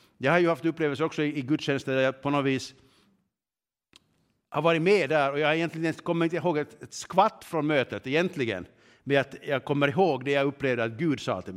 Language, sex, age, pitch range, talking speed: Swedish, male, 50-69, 125-165 Hz, 205 wpm